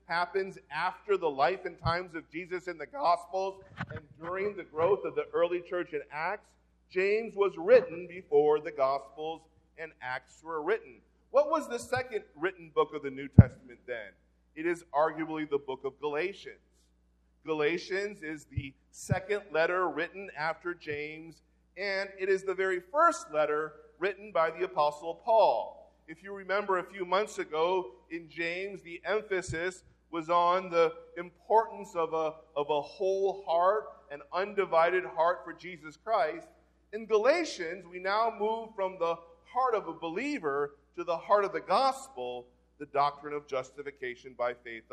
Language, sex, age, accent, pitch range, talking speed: English, male, 40-59, American, 160-210 Hz, 160 wpm